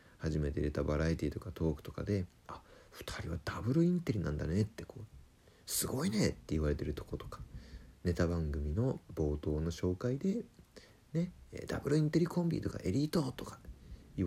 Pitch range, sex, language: 85-125 Hz, male, Japanese